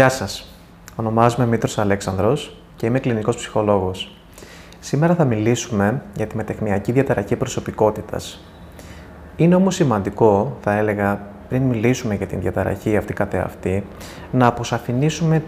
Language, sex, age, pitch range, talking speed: Greek, male, 20-39, 100-130 Hz, 120 wpm